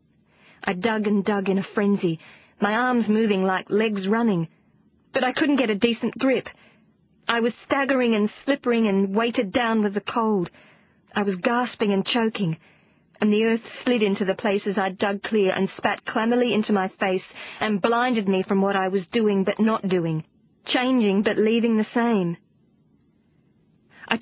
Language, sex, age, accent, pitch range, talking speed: English, female, 40-59, Australian, 195-230 Hz, 170 wpm